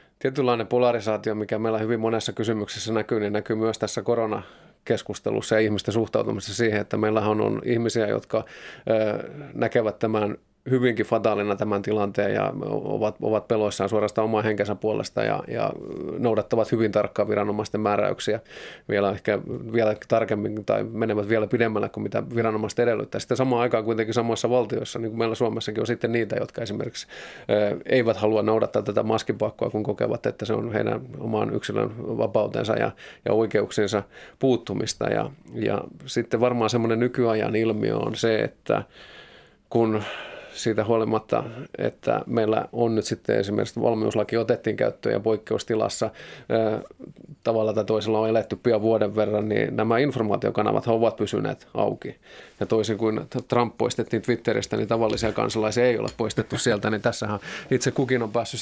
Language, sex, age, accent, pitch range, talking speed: Finnish, male, 20-39, native, 105-115 Hz, 150 wpm